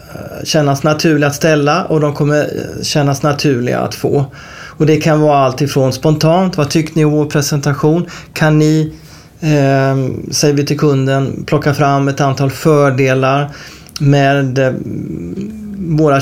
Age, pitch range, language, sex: 30-49, 135-165 Hz, Swedish, male